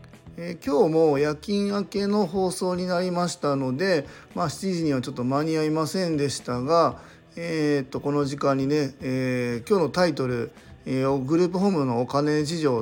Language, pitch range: Japanese, 135-185 Hz